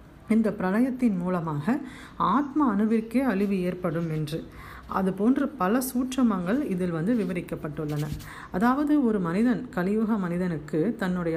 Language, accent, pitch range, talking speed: Tamil, native, 170-240 Hz, 110 wpm